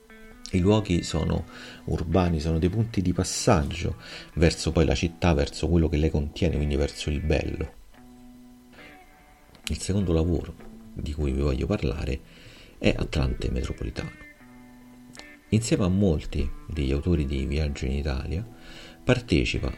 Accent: native